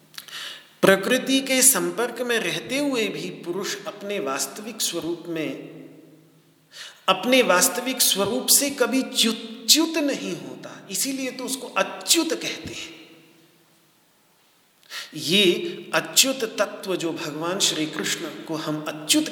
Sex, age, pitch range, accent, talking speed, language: male, 50-69, 145-210 Hz, native, 110 wpm, Hindi